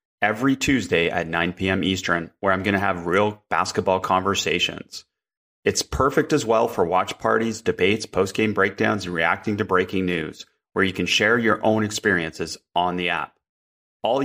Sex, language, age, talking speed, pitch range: male, English, 30-49, 170 wpm, 95-125 Hz